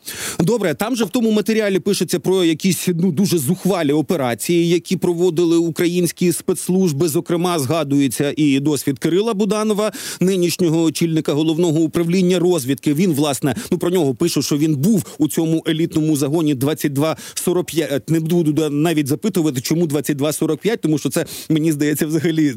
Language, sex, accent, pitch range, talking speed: Ukrainian, male, native, 150-180 Hz, 145 wpm